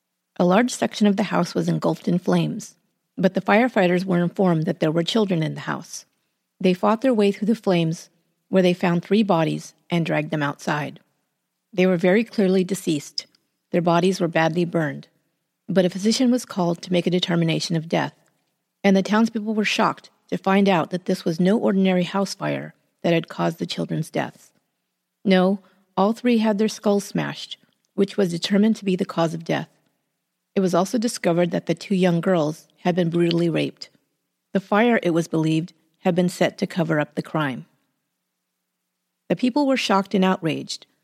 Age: 40-59